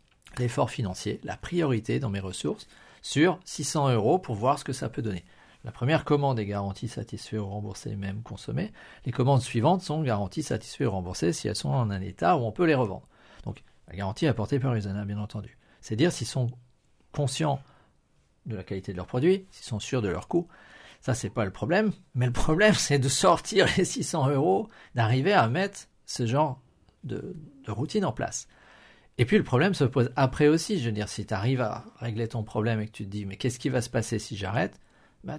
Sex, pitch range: male, 110-160 Hz